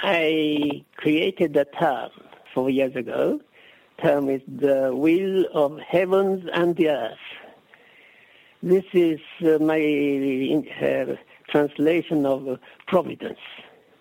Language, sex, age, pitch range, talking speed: English, male, 60-79, 145-175 Hz, 100 wpm